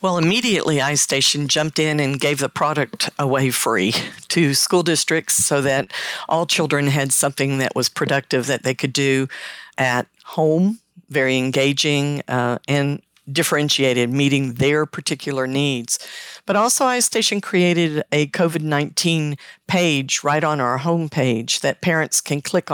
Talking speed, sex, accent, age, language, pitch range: 145 wpm, female, American, 50-69, English, 140-170 Hz